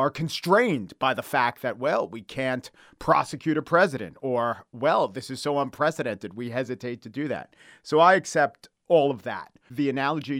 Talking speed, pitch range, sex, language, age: 180 wpm, 125-165 Hz, male, English, 40-59